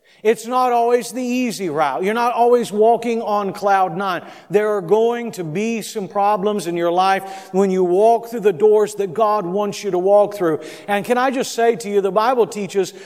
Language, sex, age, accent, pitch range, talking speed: English, male, 50-69, American, 195-235 Hz, 210 wpm